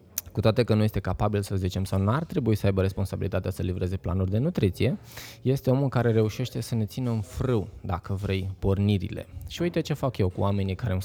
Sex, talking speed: male, 225 wpm